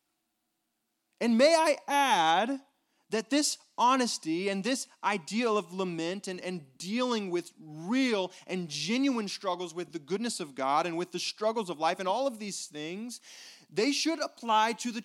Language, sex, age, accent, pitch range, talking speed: English, male, 30-49, American, 175-240 Hz, 165 wpm